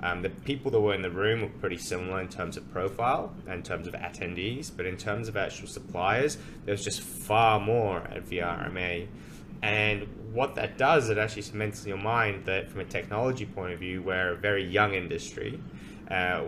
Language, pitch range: English, 95-120 Hz